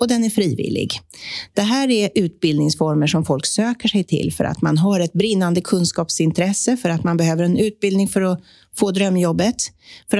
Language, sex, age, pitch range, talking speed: Swedish, female, 40-59, 165-210 Hz, 185 wpm